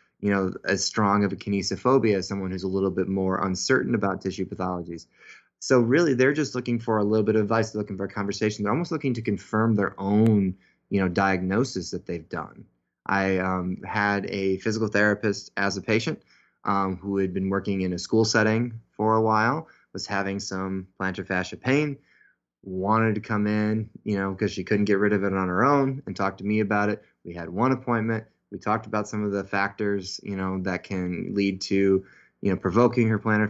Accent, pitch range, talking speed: American, 95-110 Hz, 210 wpm